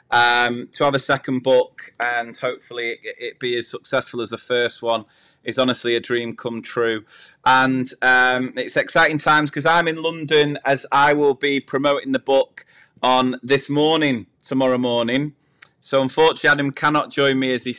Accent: British